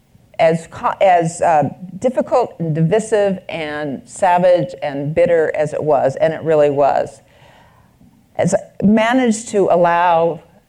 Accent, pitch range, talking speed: American, 150-195 Hz, 120 wpm